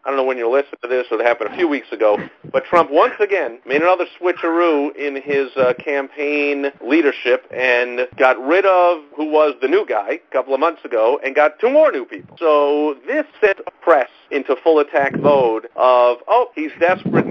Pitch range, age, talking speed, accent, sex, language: 140-210 Hz, 50-69, 210 wpm, American, male, English